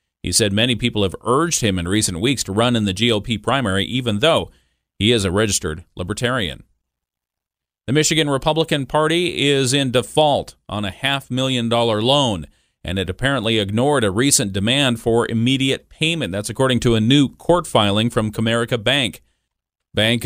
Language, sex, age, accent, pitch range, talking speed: English, male, 40-59, American, 110-145 Hz, 165 wpm